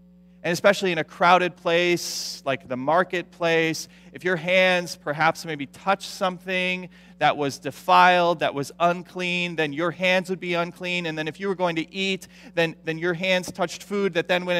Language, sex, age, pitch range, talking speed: English, male, 30-49, 155-180 Hz, 185 wpm